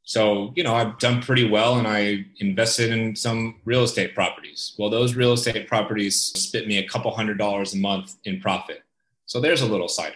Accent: American